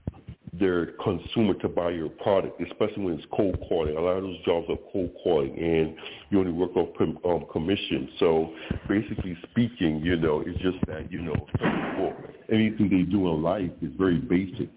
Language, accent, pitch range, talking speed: English, American, 85-95 Hz, 180 wpm